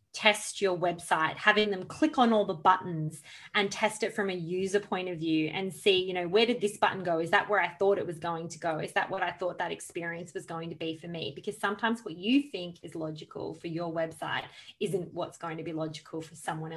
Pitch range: 155-185 Hz